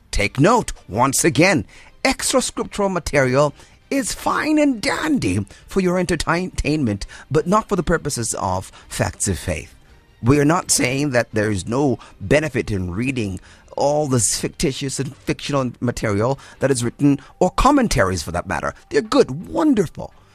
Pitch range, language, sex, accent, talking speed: 100-150 Hz, English, male, American, 150 wpm